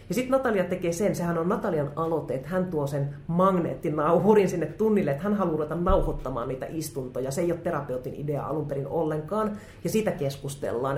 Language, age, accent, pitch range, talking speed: Finnish, 30-49, native, 140-180 Hz, 185 wpm